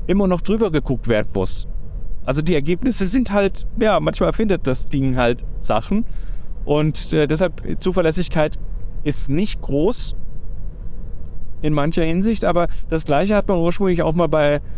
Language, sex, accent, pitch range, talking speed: German, male, German, 125-175 Hz, 150 wpm